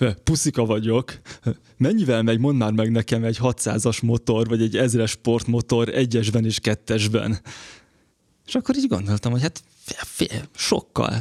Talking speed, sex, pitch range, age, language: 135 wpm, male, 110-120 Hz, 20-39, Hungarian